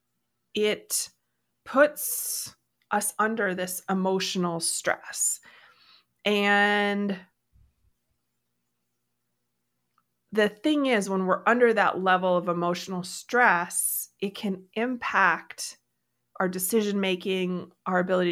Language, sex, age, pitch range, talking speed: English, female, 30-49, 170-200 Hz, 85 wpm